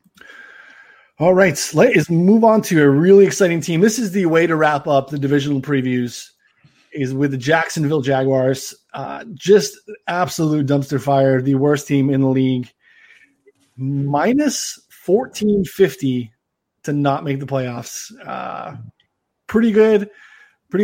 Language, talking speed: English, 135 wpm